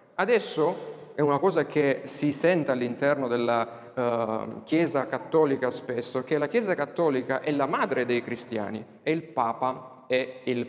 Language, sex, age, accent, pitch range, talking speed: Italian, male, 30-49, native, 125-160 Hz, 150 wpm